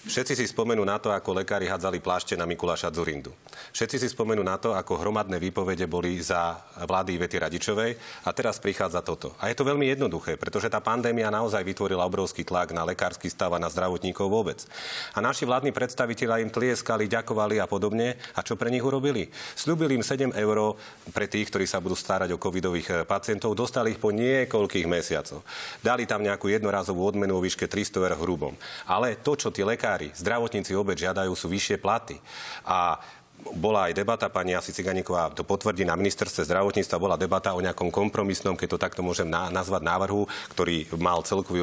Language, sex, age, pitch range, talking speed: Slovak, male, 40-59, 90-110 Hz, 180 wpm